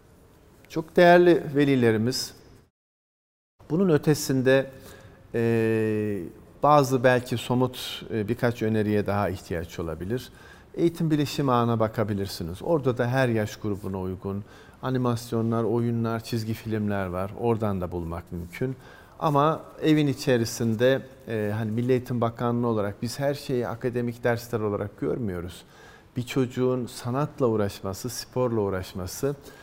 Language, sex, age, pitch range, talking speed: Turkish, male, 50-69, 105-125 Hz, 105 wpm